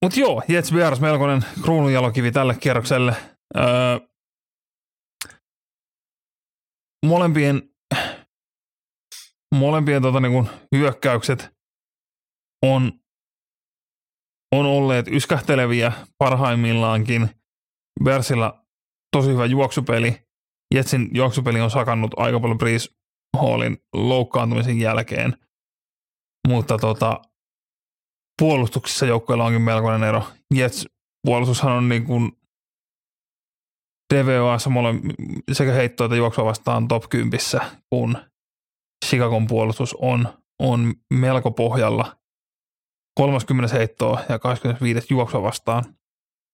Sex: male